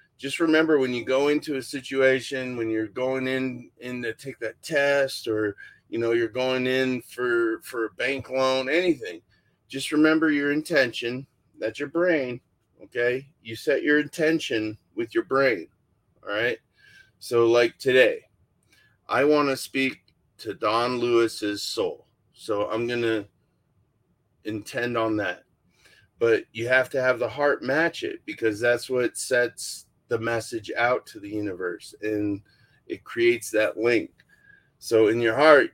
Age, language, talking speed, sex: 30-49, English, 155 wpm, male